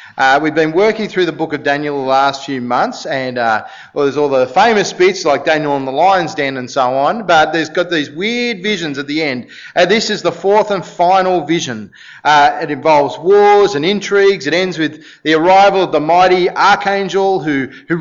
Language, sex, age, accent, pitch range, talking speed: English, male, 30-49, Australian, 150-205 Hz, 205 wpm